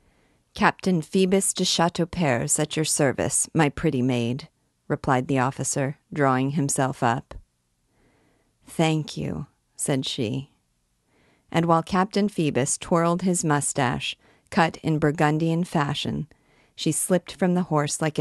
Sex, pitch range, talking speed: female, 130-165 Hz, 120 wpm